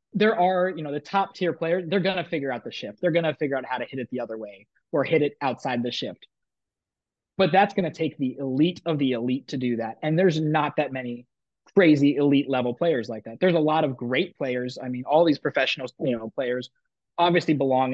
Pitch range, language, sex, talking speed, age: 125-160 Hz, English, male, 245 wpm, 20-39